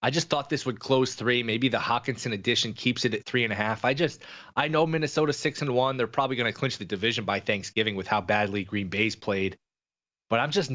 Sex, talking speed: male, 245 wpm